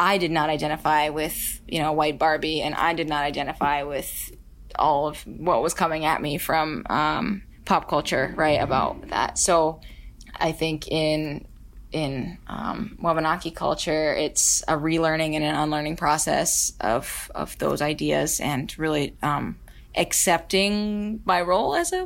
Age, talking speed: 20-39, 150 wpm